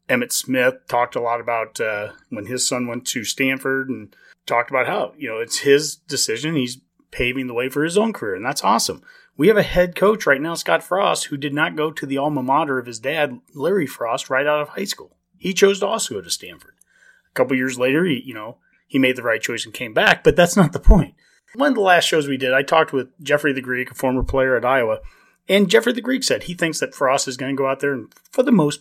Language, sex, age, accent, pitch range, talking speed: English, male, 30-49, American, 130-180 Hz, 255 wpm